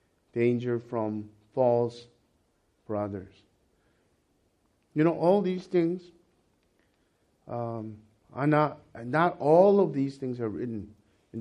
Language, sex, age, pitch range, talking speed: English, male, 50-69, 115-160 Hz, 105 wpm